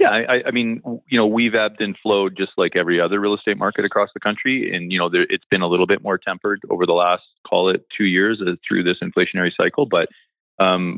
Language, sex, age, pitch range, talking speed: English, male, 30-49, 85-95 Hz, 245 wpm